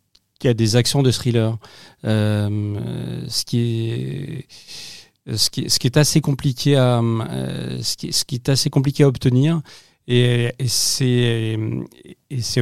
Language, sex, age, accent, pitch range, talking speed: French, male, 40-59, French, 110-130 Hz, 90 wpm